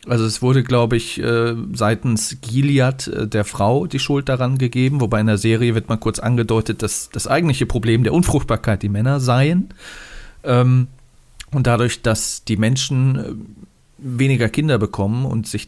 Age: 40-59